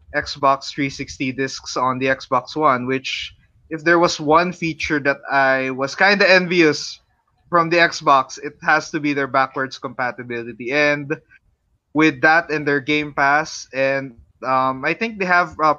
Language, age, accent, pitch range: English, 20-39, Filipino, 135-160 Hz